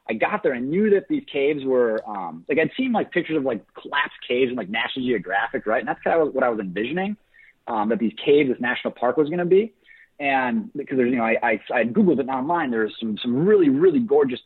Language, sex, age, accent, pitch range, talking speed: English, male, 30-49, American, 115-175 Hz, 245 wpm